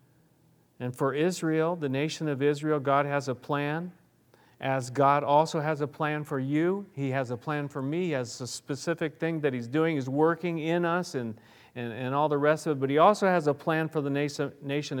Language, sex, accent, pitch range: English, male, American, 120-150 Hz